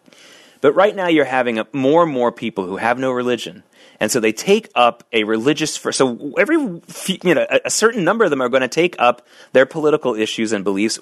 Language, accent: English, American